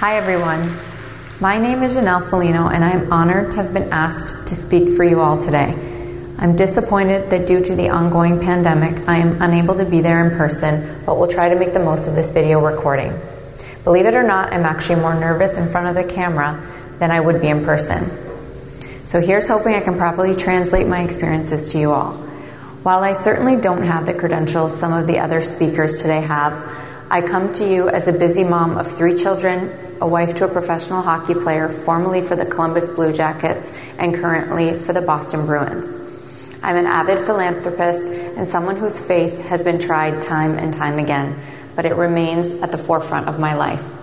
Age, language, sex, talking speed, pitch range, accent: 30-49, English, female, 200 wpm, 160-180 Hz, American